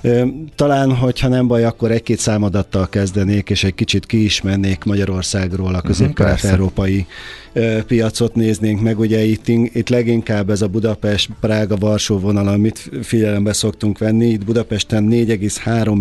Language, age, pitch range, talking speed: Hungarian, 40-59, 95-110 Hz, 130 wpm